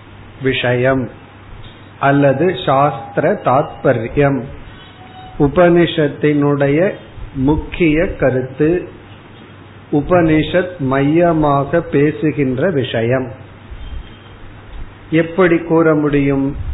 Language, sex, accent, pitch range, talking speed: Tamil, male, native, 115-155 Hz, 45 wpm